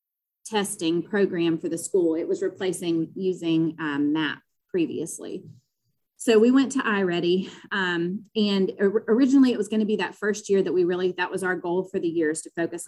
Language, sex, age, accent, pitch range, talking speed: English, female, 30-49, American, 170-220 Hz, 175 wpm